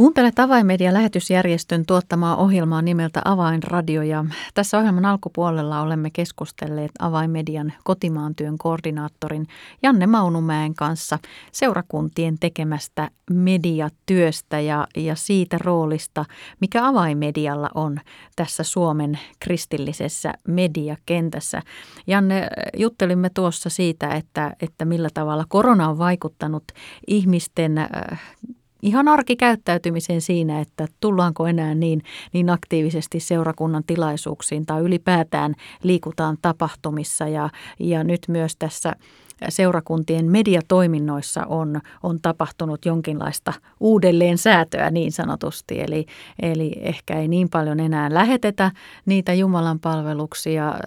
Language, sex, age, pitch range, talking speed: Finnish, female, 30-49, 155-180 Hz, 100 wpm